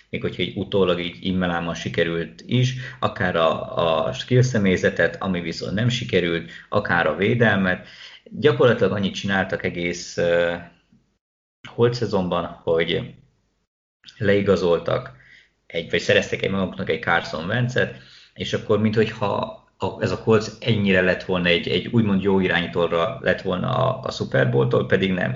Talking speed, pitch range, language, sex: 140 wpm, 90-110 Hz, Hungarian, male